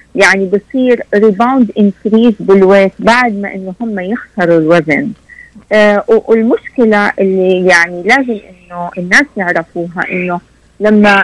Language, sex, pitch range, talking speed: Arabic, female, 185-230 Hz, 110 wpm